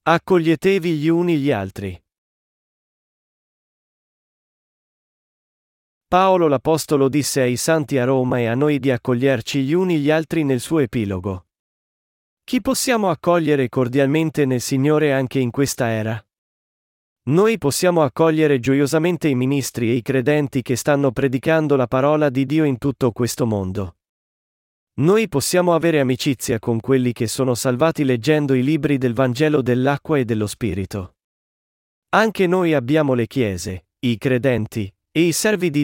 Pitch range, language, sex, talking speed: 120-155 Hz, Italian, male, 140 wpm